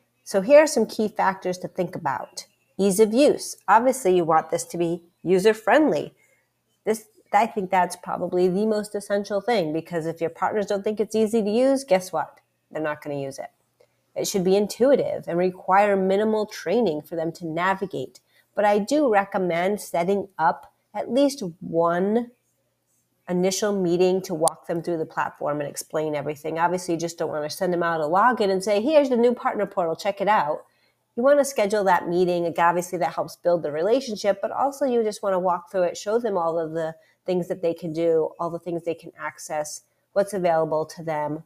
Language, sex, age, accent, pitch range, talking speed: English, female, 40-59, American, 165-210 Hz, 205 wpm